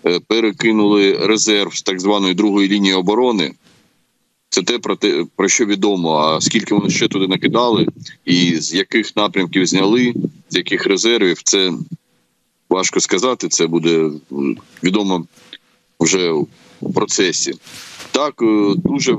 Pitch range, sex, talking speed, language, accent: 90-110 Hz, male, 125 wpm, Ukrainian, native